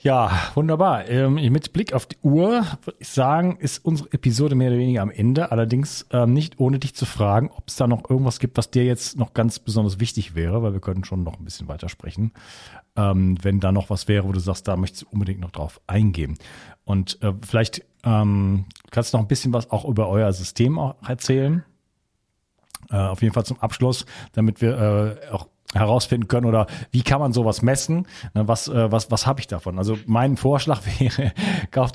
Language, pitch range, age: German, 105-130 Hz, 40-59